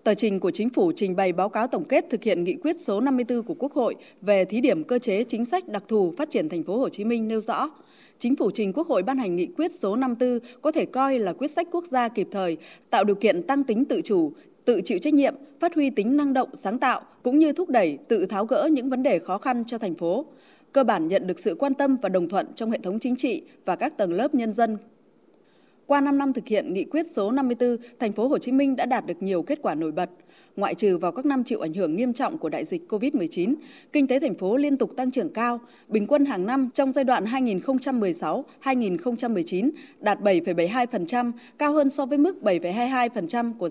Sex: female